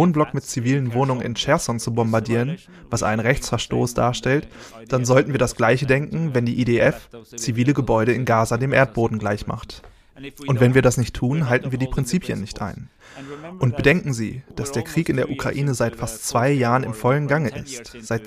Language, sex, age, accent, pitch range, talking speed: German, male, 30-49, German, 120-140 Hz, 190 wpm